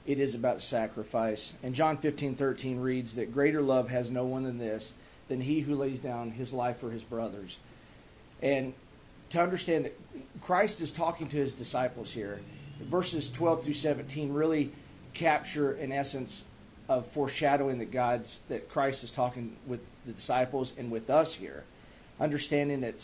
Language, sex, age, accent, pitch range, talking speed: English, male, 40-59, American, 120-140 Hz, 165 wpm